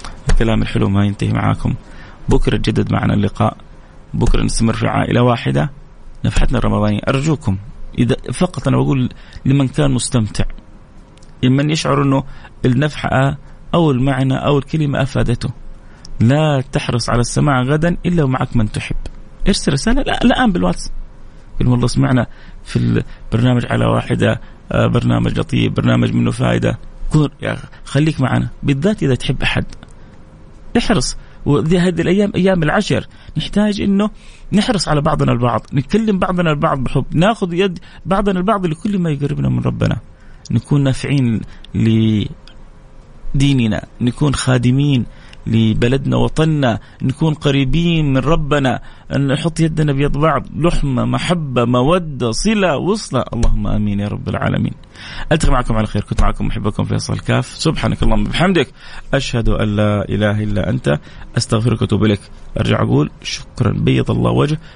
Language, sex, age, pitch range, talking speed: English, male, 30-49, 110-150 Hz, 130 wpm